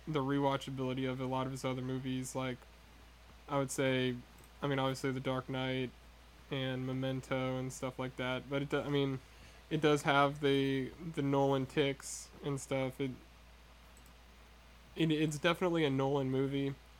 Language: English